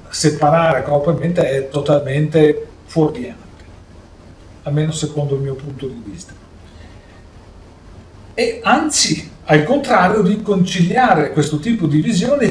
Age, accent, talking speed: 40-59, native, 100 wpm